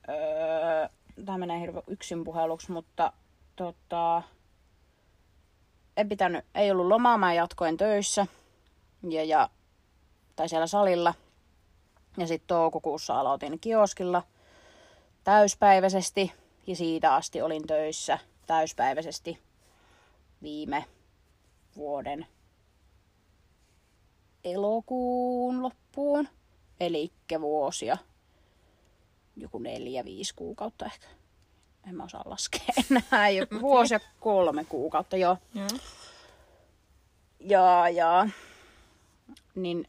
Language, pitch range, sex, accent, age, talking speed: Finnish, 145-210 Hz, female, native, 30-49, 80 wpm